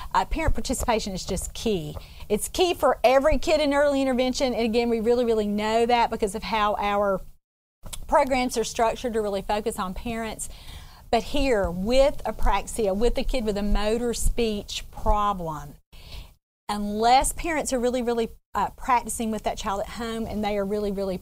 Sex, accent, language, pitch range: female, American, English, 210-255 Hz